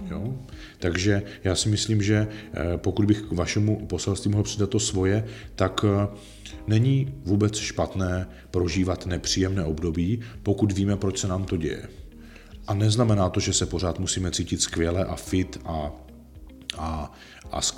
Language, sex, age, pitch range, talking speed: Czech, male, 40-59, 90-105 Hz, 145 wpm